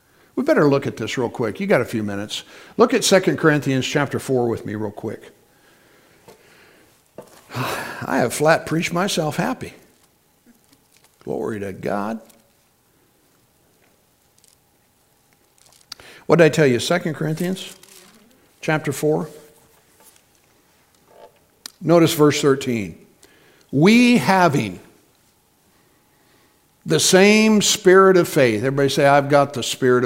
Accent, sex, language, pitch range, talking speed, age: American, male, English, 130-185 Hz, 110 wpm, 60-79